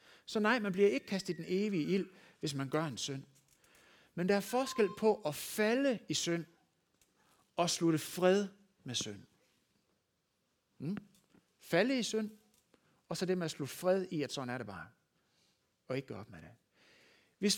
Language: Danish